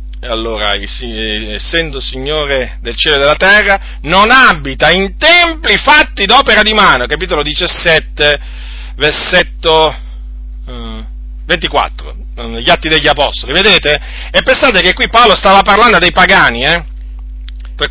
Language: Italian